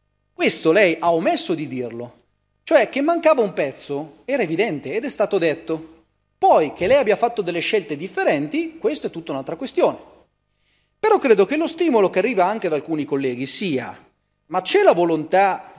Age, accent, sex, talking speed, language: 30-49, native, male, 175 wpm, Italian